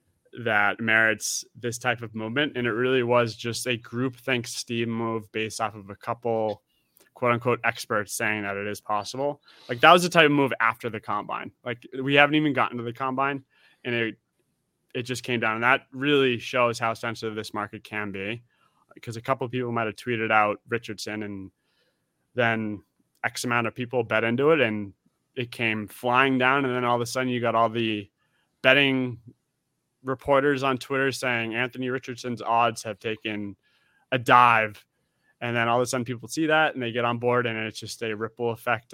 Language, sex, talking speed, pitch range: English, male, 200 wpm, 110-130 Hz